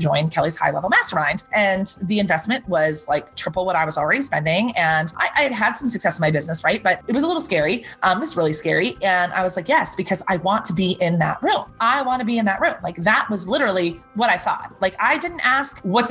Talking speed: 260 wpm